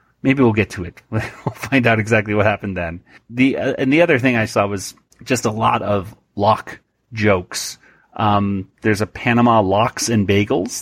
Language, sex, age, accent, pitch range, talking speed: English, male, 30-49, American, 100-120 Hz, 190 wpm